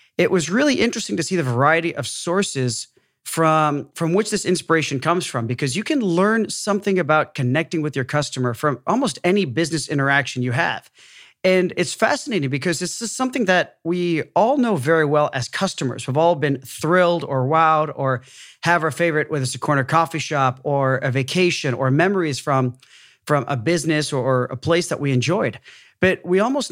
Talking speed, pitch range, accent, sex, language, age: 190 wpm, 135-175 Hz, American, male, English, 40-59